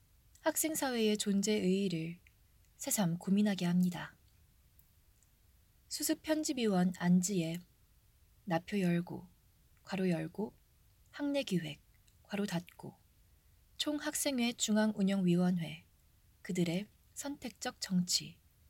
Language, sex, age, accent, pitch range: Korean, female, 20-39, native, 165-215 Hz